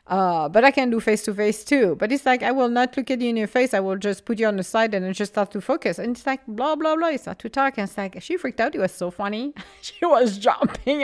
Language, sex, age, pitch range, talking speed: English, female, 50-69, 195-270 Hz, 305 wpm